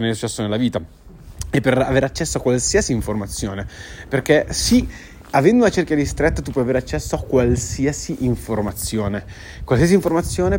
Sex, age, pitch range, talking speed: male, 20-39, 115-150 Hz, 145 wpm